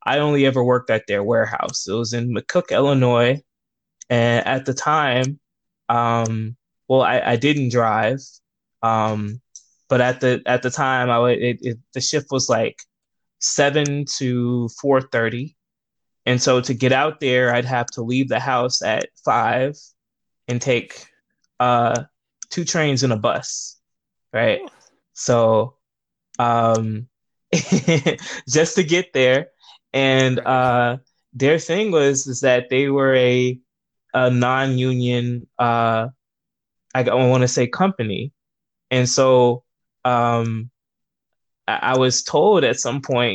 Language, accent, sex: English, American, male